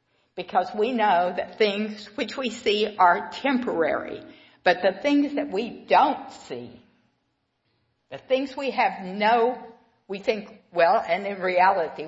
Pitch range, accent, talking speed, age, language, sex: 180-255 Hz, American, 140 wpm, 60-79, English, female